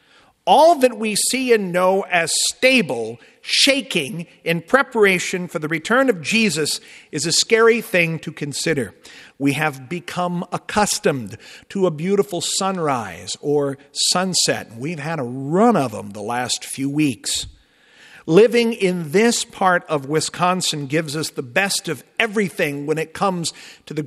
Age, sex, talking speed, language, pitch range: 50-69, male, 145 wpm, English, 135-195 Hz